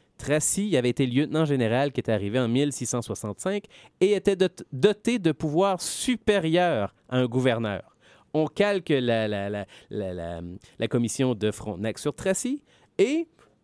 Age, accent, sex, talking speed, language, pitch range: 30-49, Canadian, male, 145 wpm, French, 120-165 Hz